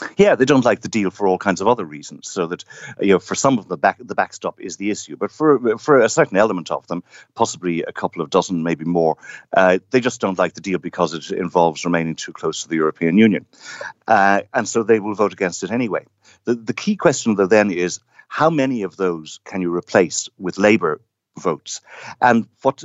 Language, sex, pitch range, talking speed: English, male, 85-115 Hz, 225 wpm